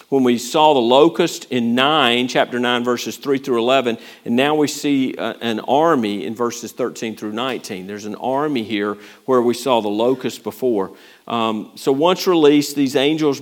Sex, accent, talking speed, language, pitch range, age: male, American, 180 wpm, English, 125-155 Hz, 50-69